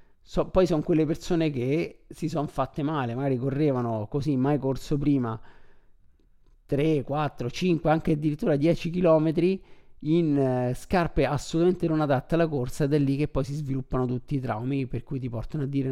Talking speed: 175 wpm